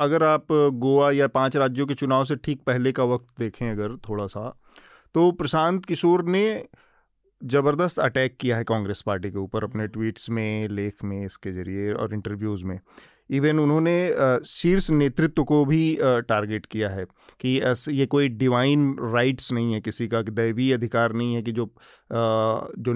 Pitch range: 115-150 Hz